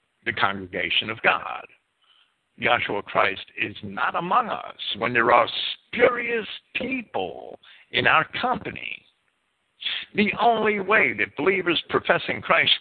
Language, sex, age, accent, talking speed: English, male, 60-79, American, 115 wpm